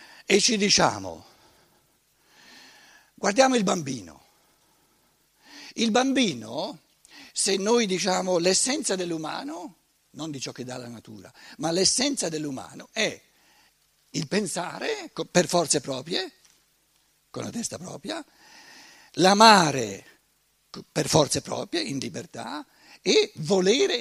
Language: Italian